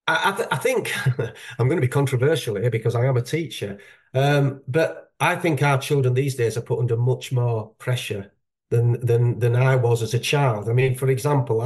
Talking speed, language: 210 wpm, English